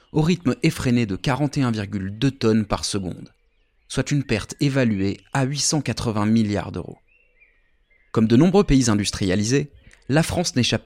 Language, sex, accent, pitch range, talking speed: French, male, French, 105-155 Hz, 135 wpm